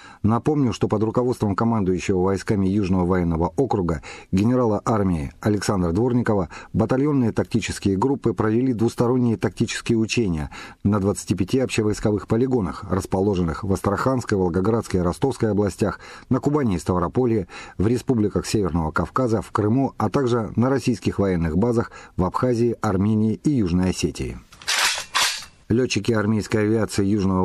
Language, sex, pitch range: Russian, male, 95-120 Hz